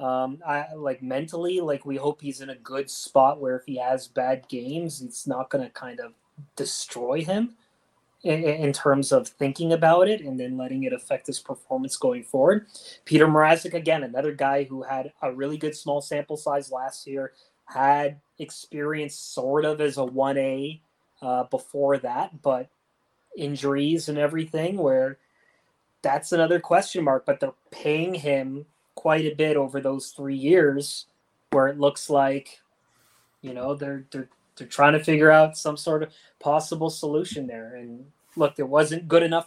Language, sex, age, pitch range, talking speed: English, male, 20-39, 135-160 Hz, 170 wpm